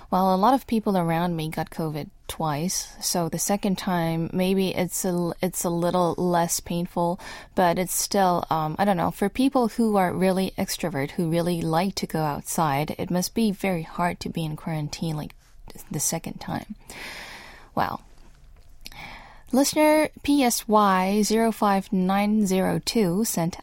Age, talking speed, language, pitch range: 10-29, 145 wpm, English, 180-220 Hz